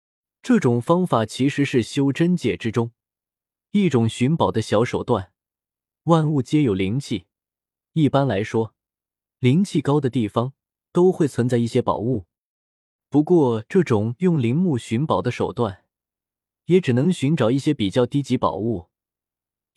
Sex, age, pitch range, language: male, 20-39, 115-170 Hz, Chinese